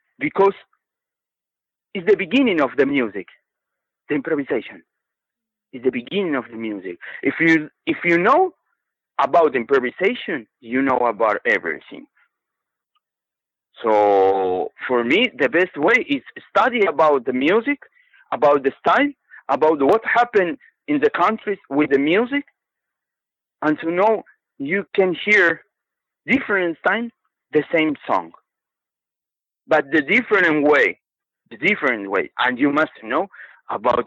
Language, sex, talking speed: English, male, 125 wpm